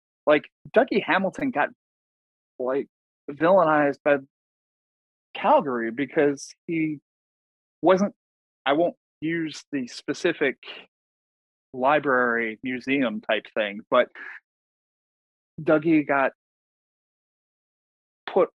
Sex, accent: male, American